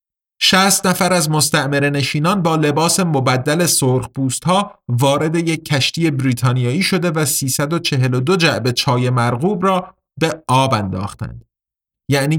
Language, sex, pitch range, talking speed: Persian, male, 125-170 Hz, 125 wpm